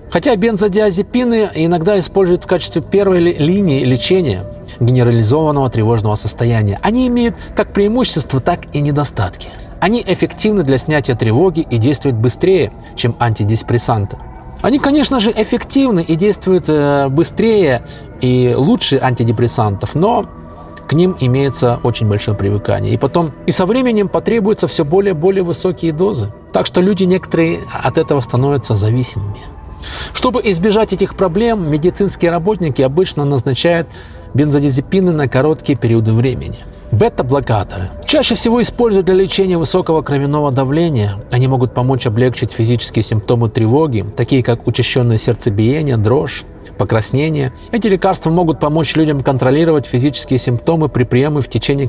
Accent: native